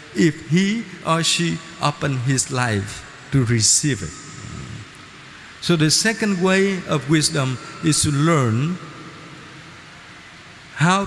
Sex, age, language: male, 50-69, Vietnamese